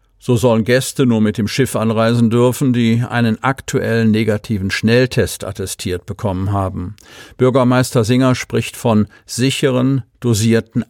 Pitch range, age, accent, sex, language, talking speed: 105-125 Hz, 50-69, German, male, German, 125 wpm